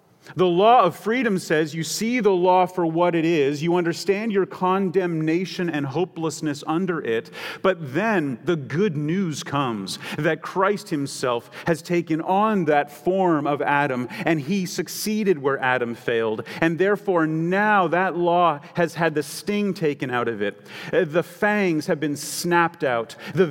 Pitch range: 135-175 Hz